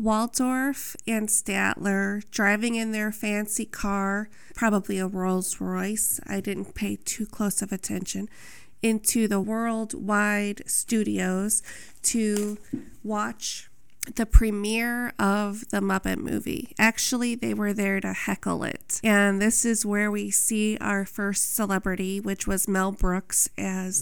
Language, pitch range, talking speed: English, 195-220 Hz, 130 wpm